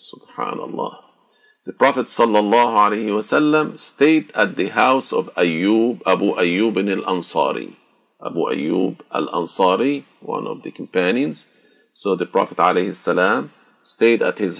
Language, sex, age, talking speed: Arabic, male, 50-69, 125 wpm